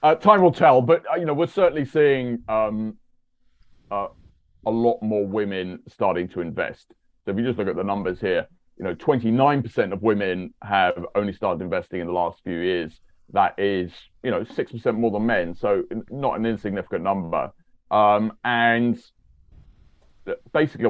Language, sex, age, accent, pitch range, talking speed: English, male, 30-49, British, 100-135 Hz, 165 wpm